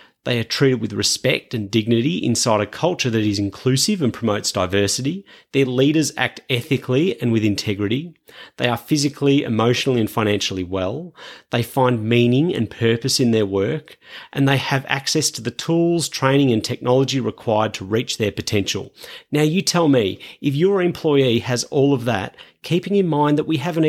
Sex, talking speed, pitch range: male, 175 wpm, 115-155 Hz